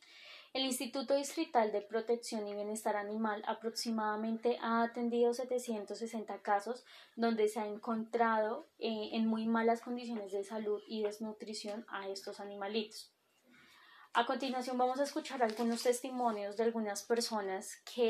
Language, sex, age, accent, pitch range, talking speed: Spanish, female, 10-29, Colombian, 205-235 Hz, 135 wpm